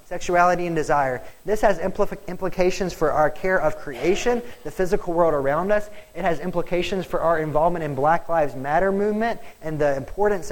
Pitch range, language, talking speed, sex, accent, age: 145-185 Hz, English, 170 wpm, male, American, 20-39